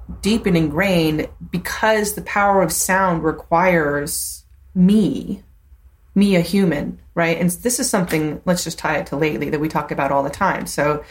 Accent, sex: American, female